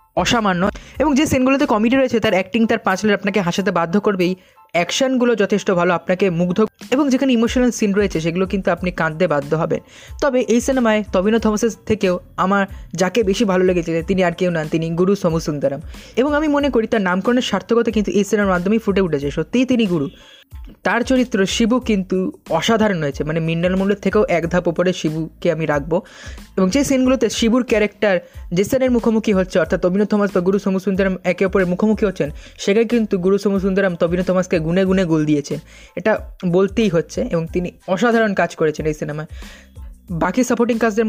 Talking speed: 150 wpm